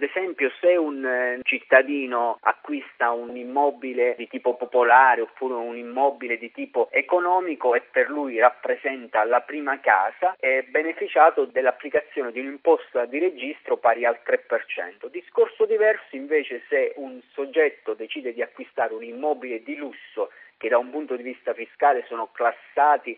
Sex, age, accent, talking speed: male, 40-59, native, 145 wpm